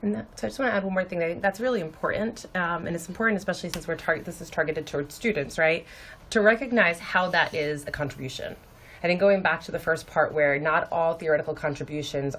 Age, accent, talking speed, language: 30-49, American, 230 wpm, English